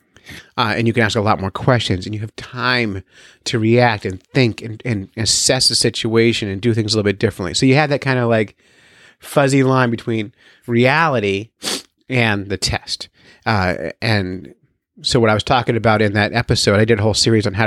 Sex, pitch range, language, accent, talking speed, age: male, 105-130 Hz, English, American, 205 wpm, 30-49